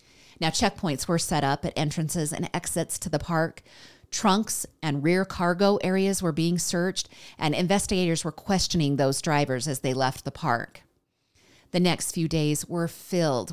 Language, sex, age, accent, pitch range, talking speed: English, female, 30-49, American, 155-200 Hz, 165 wpm